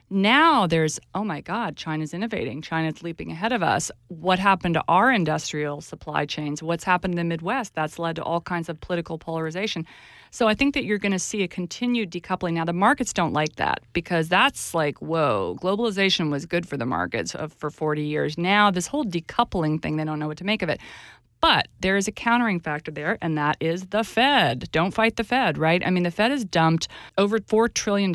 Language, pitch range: English, 155-195 Hz